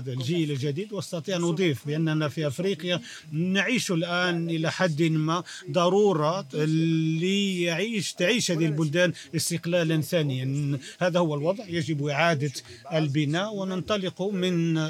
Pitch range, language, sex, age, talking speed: 155-180 Hz, Arabic, male, 40-59, 105 wpm